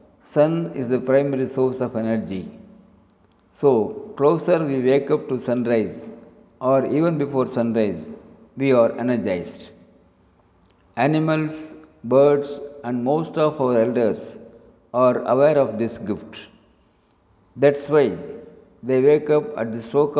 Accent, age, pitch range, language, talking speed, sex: native, 60-79, 120-140 Hz, Tamil, 120 wpm, male